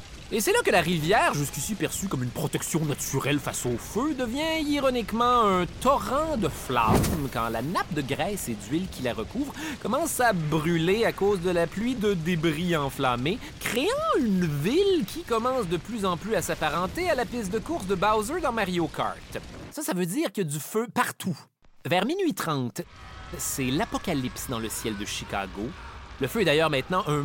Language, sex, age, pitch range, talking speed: French, male, 30-49, 135-210 Hz, 195 wpm